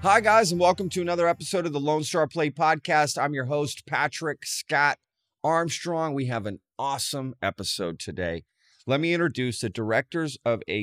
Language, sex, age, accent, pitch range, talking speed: English, male, 30-49, American, 100-140 Hz, 175 wpm